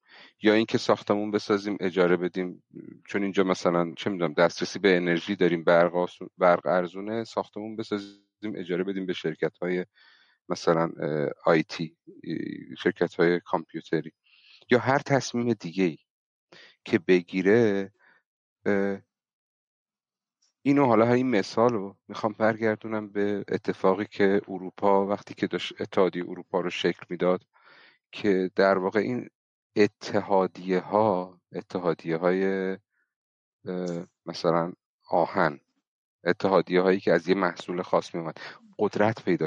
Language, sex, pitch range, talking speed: Persian, male, 90-105 Hz, 110 wpm